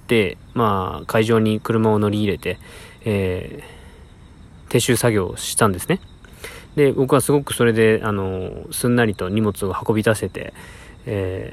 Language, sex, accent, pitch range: Japanese, male, native, 100-135 Hz